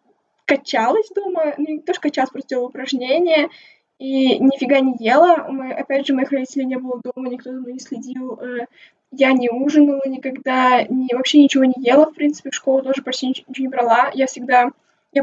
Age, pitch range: 20-39, 245-295 Hz